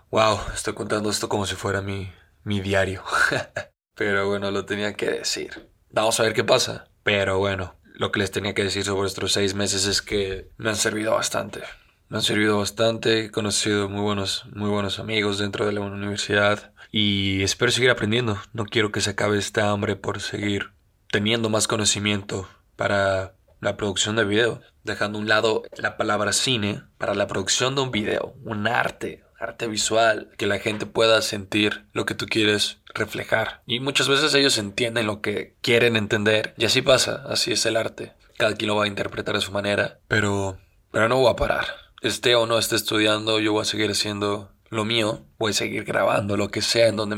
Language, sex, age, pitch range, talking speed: Spanish, male, 20-39, 100-110 Hz, 195 wpm